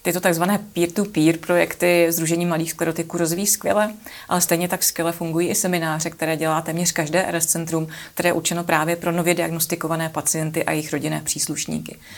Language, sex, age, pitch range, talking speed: Czech, female, 30-49, 165-180 Hz, 170 wpm